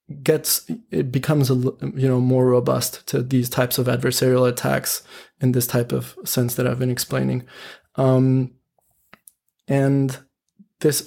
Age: 20-39